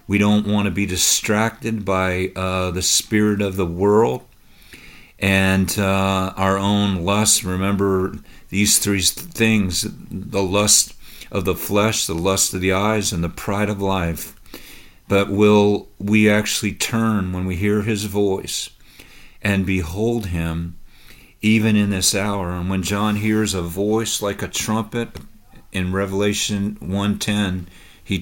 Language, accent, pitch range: English, American, 95-105 Hz